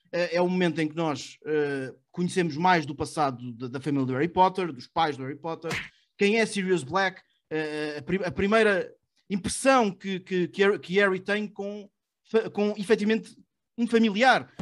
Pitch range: 155-200 Hz